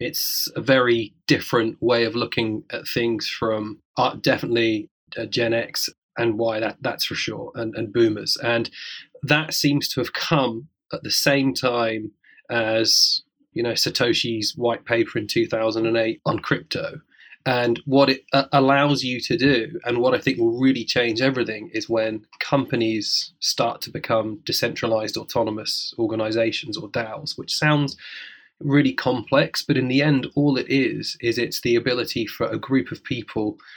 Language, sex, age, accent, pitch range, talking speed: English, male, 20-39, British, 115-150 Hz, 160 wpm